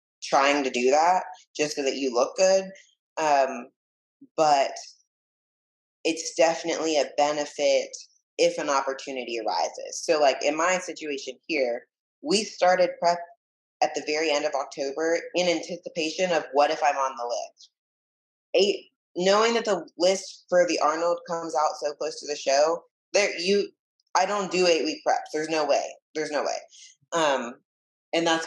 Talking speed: 160 wpm